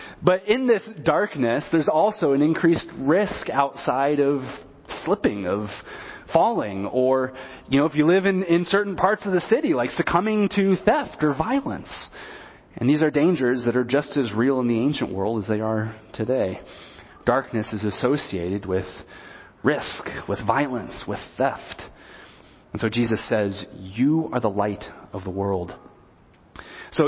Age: 30-49